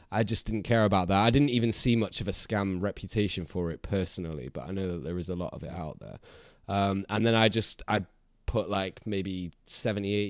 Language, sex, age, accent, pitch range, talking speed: English, male, 20-39, British, 95-120 Hz, 235 wpm